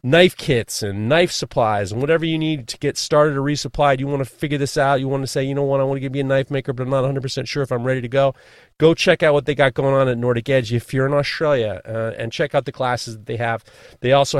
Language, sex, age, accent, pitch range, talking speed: English, male, 30-49, American, 115-140 Hz, 295 wpm